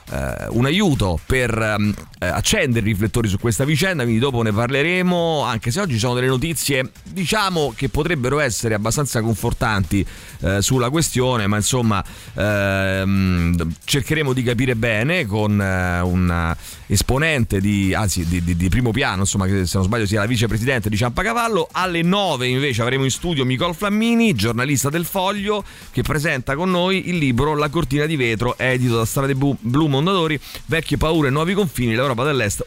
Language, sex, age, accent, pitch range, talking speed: Italian, male, 30-49, native, 110-150 Hz, 170 wpm